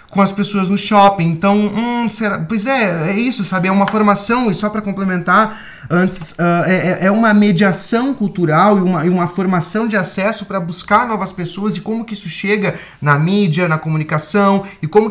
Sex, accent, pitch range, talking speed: male, Brazilian, 165-210 Hz, 195 wpm